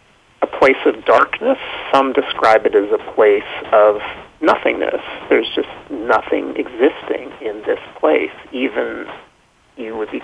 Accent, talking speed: American, 135 wpm